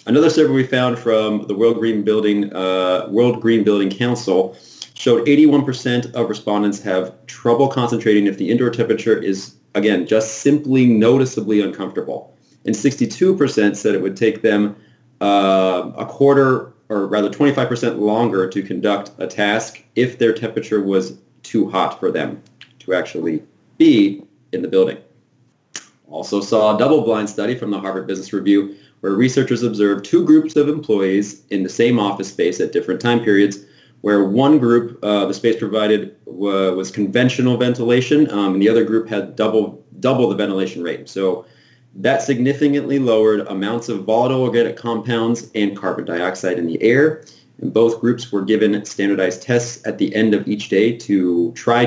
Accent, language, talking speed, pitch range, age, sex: American, English, 160 wpm, 100-125 Hz, 30-49, male